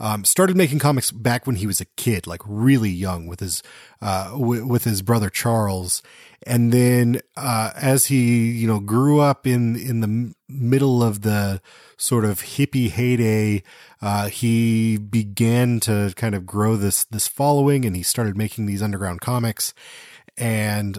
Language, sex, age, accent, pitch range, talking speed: English, male, 30-49, American, 105-130 Hz, 165 wpm